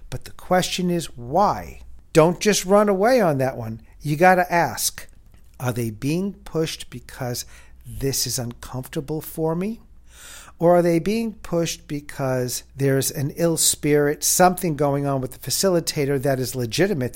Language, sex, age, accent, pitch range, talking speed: English, male, 50-69, American, 135-180 Hz, 155 wpm